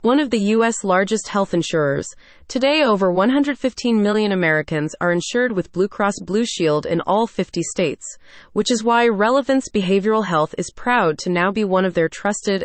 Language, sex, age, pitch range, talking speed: English, female, 30-49, 170-225 Hz, 180 wpm